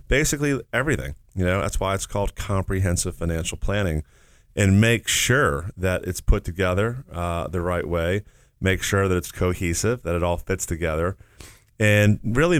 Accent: American